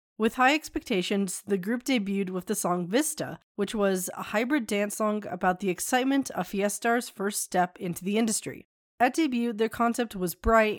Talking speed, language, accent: 180 wpm, English, American